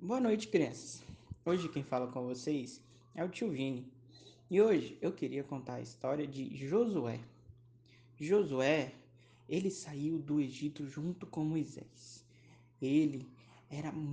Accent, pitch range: Brazilian, 135-170 Hz